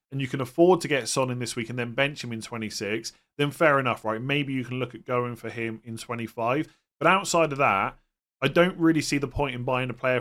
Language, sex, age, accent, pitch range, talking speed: English, male, 30-49, British, 120-145 Hz, 260 wpm